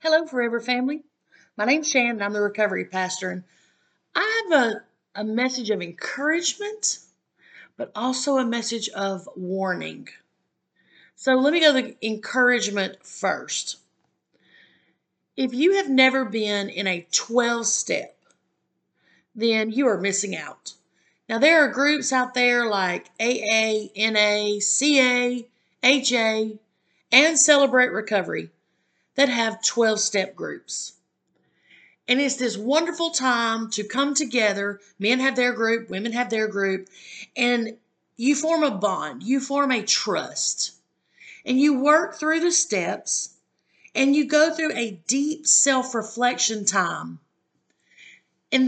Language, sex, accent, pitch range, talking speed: English, female, American, 210-275 Hz, 130 wpm